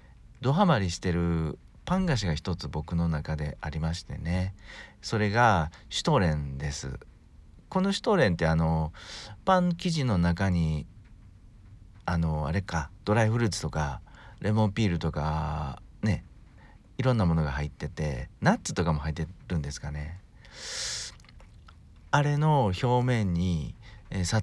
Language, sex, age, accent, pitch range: Japanese, male, 50-69, native, 80-115 Hz